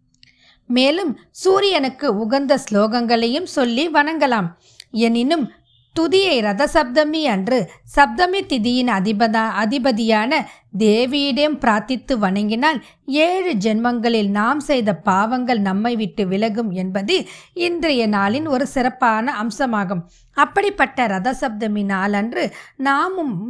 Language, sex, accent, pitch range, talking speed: Tamil, female, native, 215-285 Hz, 90 wpm